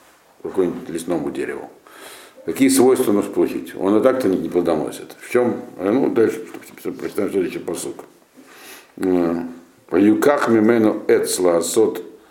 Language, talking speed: Russian, 100 wpm